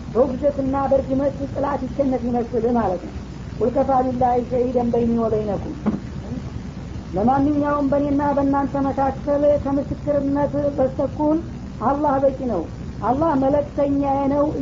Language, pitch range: Amharic, 260-280 Hz